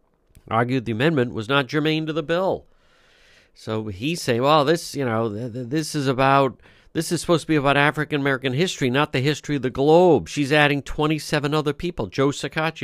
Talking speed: 200 wpm